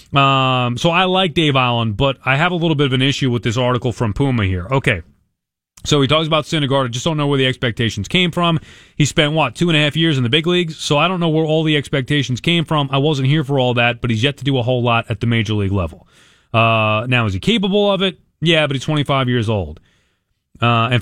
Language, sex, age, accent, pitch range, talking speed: English, male, 30-49, American, 125-175 Hz, 265 wpm